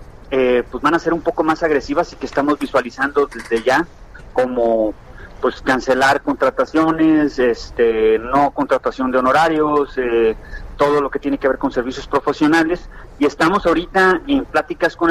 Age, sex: 40-59, male